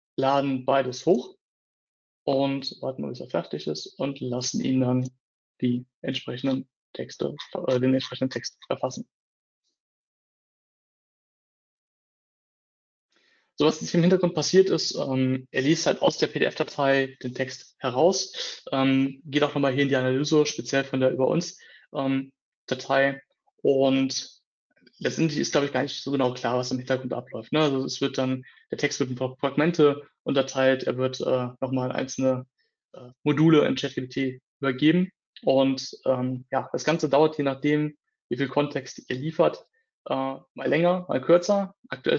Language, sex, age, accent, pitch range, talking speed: German, male, 30-49, German, 130-145 Hz, 150 wpm